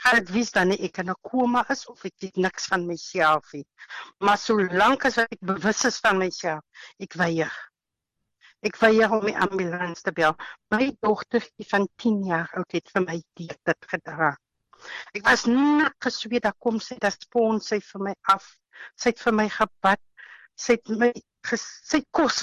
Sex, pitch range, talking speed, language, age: female, 185-245 Hz, 205 wpm, English, 60-79